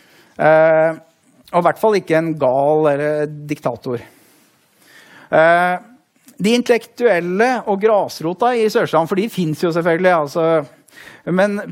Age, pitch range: 30-49, 145-180 Hz